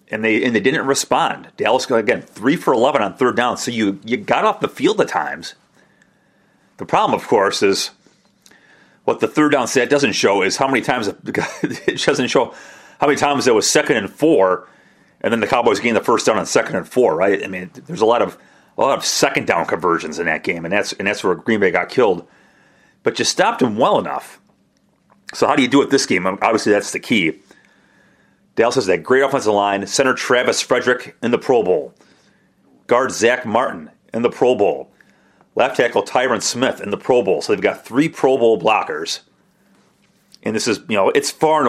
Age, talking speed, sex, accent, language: 40-59, 215 wpm, male, American, English